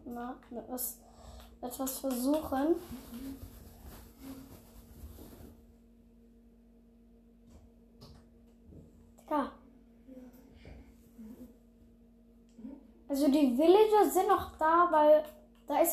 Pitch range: 230-300 Hz